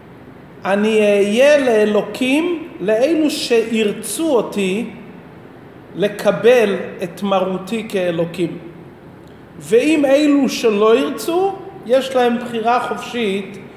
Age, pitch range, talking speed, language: 40-59, 195-265 Hz, 80 wpm, Hebrew